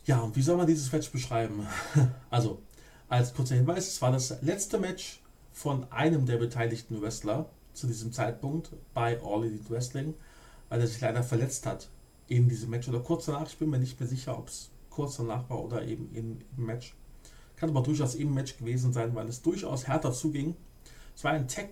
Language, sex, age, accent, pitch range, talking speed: German, male, 40-59, German, 120-145 Hz, 200 wpm